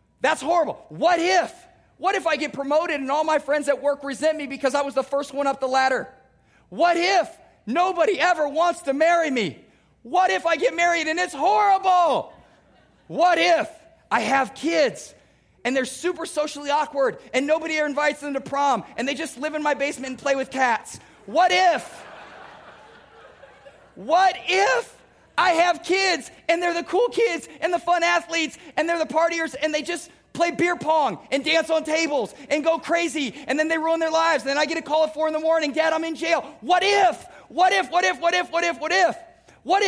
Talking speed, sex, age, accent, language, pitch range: 205 wpm, male, 40-59, American, English, 280-345 Hz